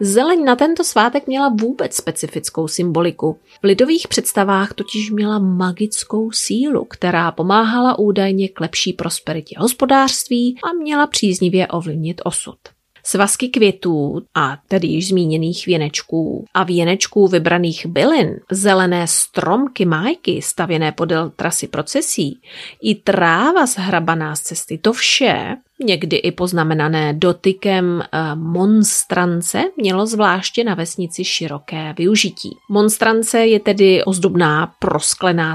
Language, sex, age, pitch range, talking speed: Czech, female, 30-49, 170-215 Hz, 115 wpm